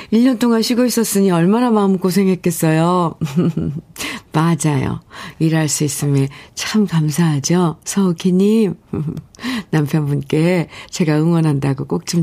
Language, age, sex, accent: Korean, 50-69, female, native